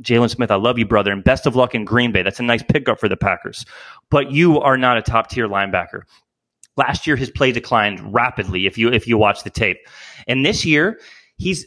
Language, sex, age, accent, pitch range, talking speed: English, male, 30-49, American, 120-175 Hz, 225 wpm